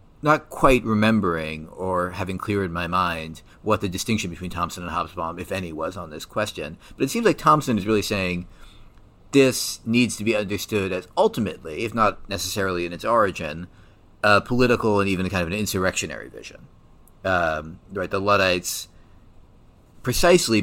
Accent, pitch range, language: American, 90-110 Hz, English